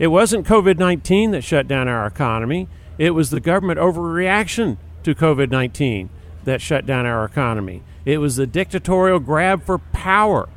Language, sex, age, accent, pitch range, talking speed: English, male, 50-69, American, 120-185 Hz, 155 wpm